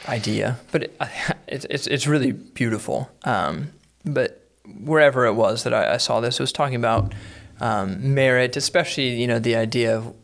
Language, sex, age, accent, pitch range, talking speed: English, male, 30-49, American, 120-145 Hz, 170 wpm